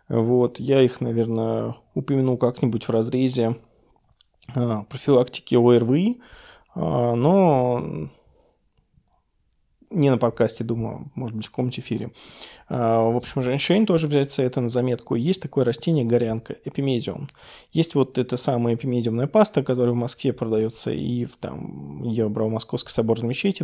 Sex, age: male, 20-39